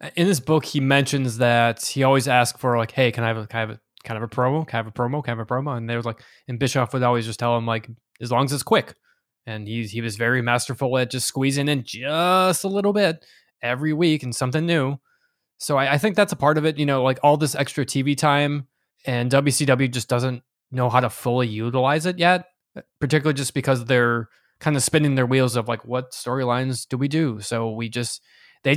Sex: male